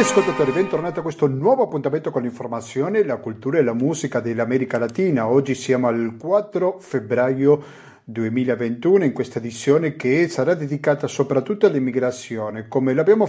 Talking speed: 140 wpm